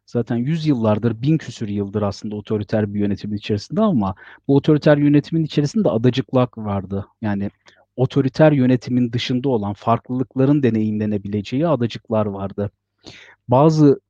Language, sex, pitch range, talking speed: Turkish, male, 110-145 Hz, 120 wpm